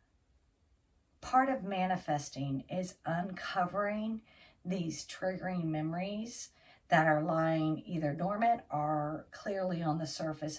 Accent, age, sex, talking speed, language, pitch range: American, 50-69, female, 100 wpm, English, 140-175 Hz